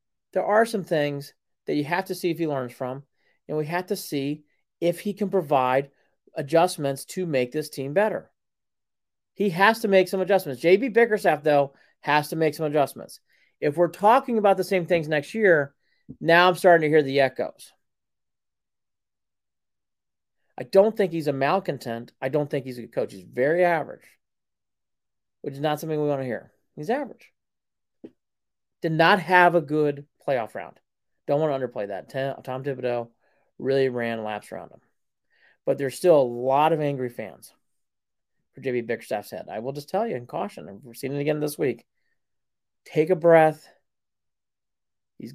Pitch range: 140-190 Hz